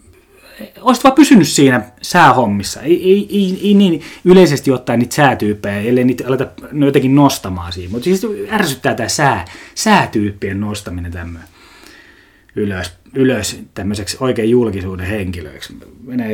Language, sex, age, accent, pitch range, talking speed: Finnish, male, 30-49, native, 105-150 Hz, 130 wpm